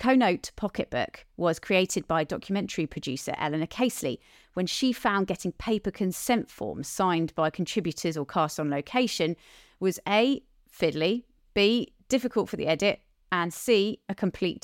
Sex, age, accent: female, 30-49, British